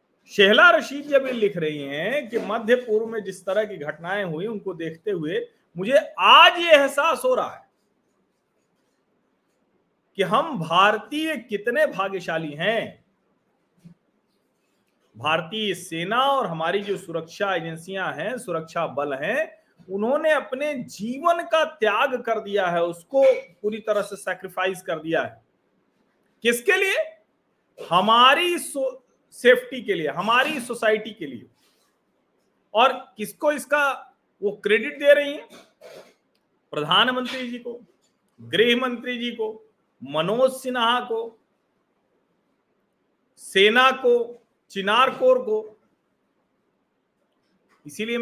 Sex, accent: male, native